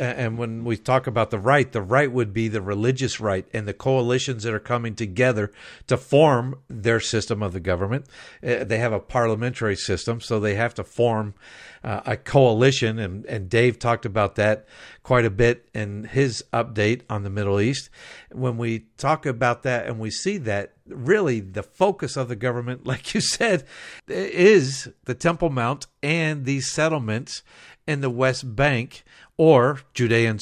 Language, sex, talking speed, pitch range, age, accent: English, male, 175 wpm, 110-130 Hz, 50-69, American